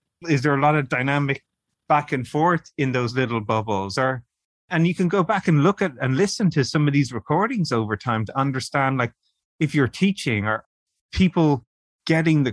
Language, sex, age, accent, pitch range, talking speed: English, male, 30-49, Irish, 115-155 Hz, 195 wpm